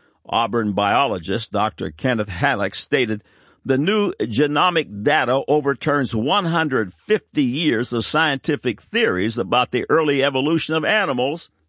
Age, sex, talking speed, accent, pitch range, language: 60-79, male, 115 wpm, American, 100-140 Hz, English